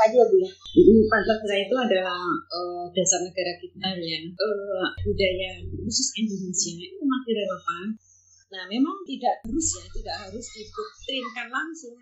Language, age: Indonesian, 20-39